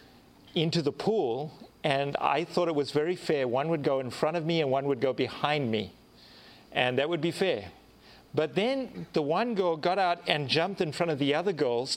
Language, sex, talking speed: English, male, 215 wpm